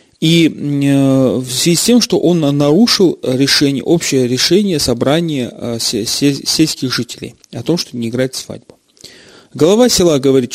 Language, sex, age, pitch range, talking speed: Russian, male, 30-49, 125-150 Hz, 130 wpm